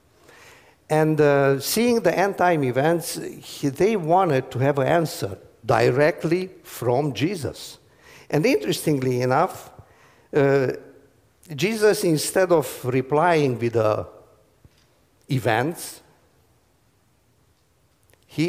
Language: English